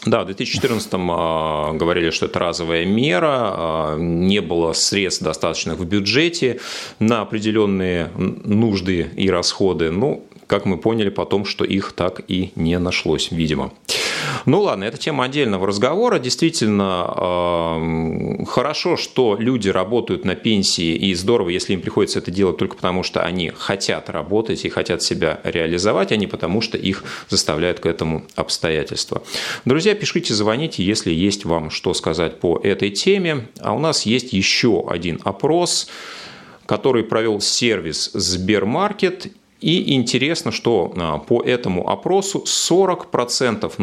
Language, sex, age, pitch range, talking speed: Russian, male, 30-49, 85-125 Hz, 140 wpm